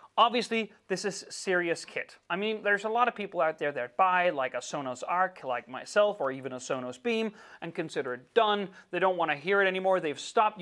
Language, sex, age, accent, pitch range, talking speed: Italian, male, 30-49, American, 165-240 Hz, 225 wpm